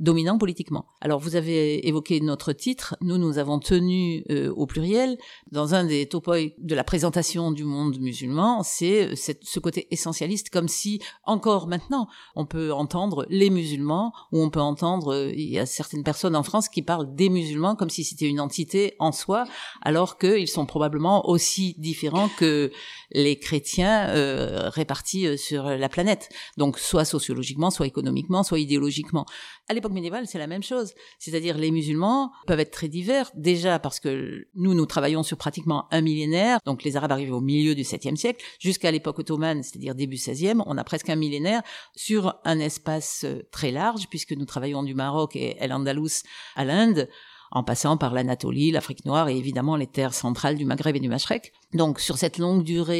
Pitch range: 150-185 Hz